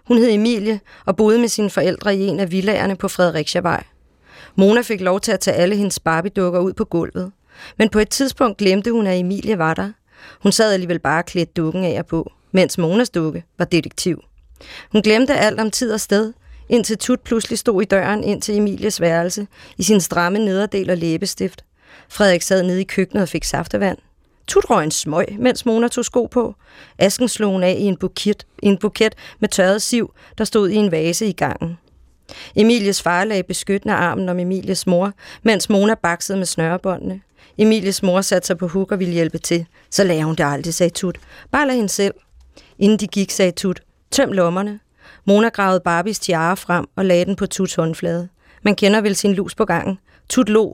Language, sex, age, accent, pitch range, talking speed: Danish, female, 30-49, native, 175-215 Hz, 200 wpm